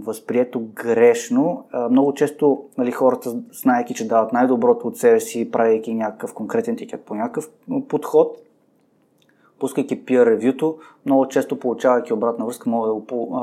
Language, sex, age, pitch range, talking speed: Bulgarian, male, 20-39, 125-165 Hz, 145 wpm